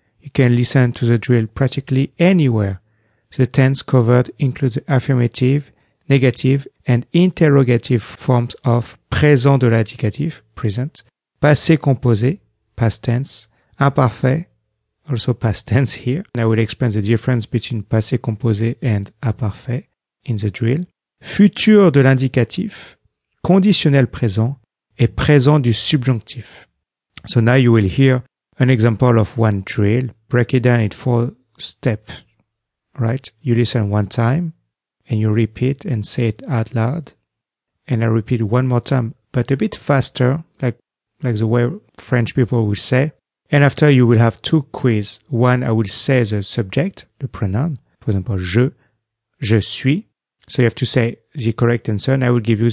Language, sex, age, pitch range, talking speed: English, male, 40-59, 110-135 Hz, 150 wpm